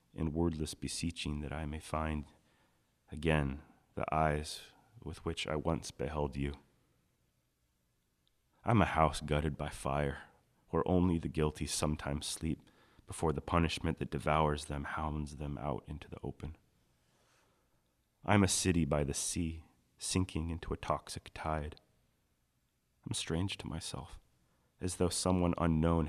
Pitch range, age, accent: 70-85 Hz, 30-49, American